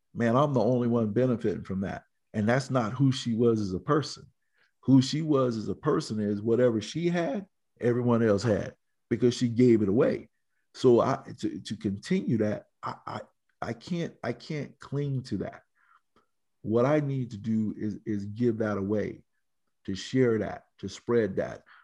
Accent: American